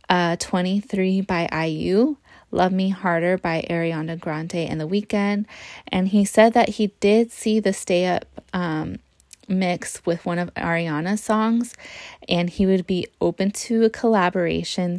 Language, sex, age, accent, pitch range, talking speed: English, female, 20-39, American, 170-205 Hz, 150 wpm